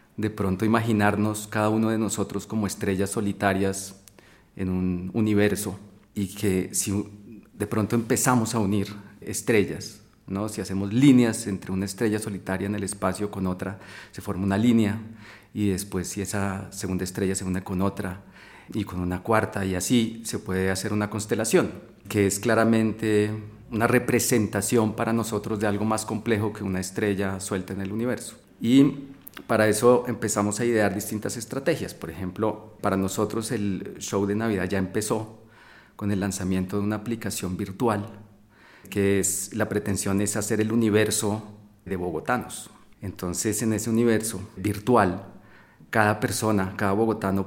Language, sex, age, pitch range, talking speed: Spanish, male, 40-59, 100-110 Hz, 155 wpm